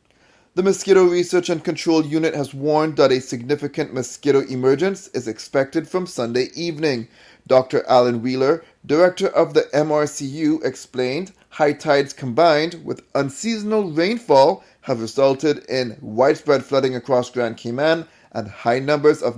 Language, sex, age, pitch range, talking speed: English, male, 30-49, 125-170 Hz, 135 wpm